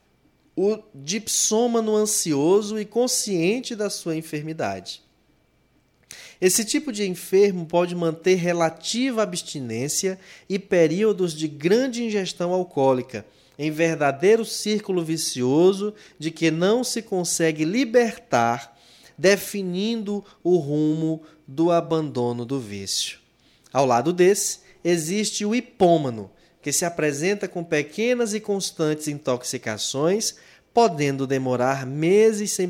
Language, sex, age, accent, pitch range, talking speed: Portuguese, male, 20-39, Brazilian, 140-200 Hz, 105 wpm